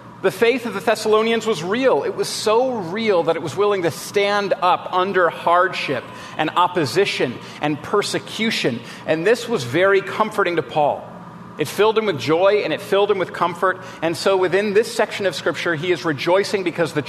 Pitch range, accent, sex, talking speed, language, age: 170-215 Hz, American, male, 190 wpm, English, 40-59